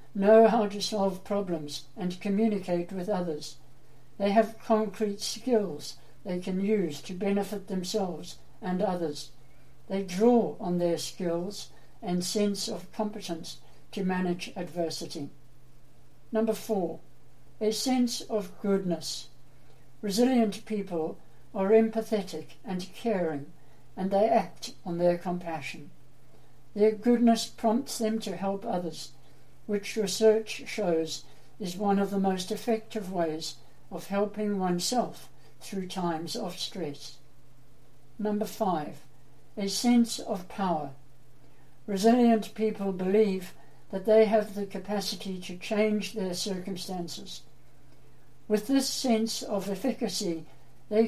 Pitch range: 165-215 Hz